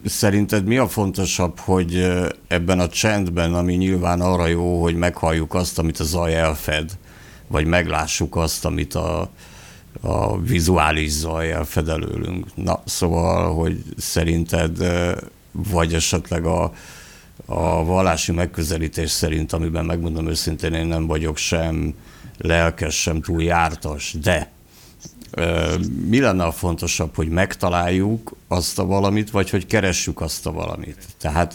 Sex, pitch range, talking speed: male, 80-95 Hz, 130 wpm